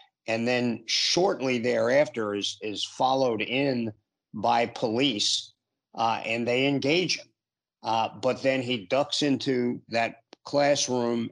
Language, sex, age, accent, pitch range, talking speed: English, male, 50-69, American, 110-130 Hz, 120 wpm